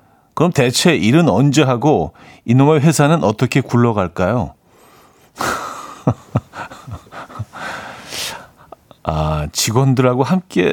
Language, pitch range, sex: Korean, 105-150 Hz, male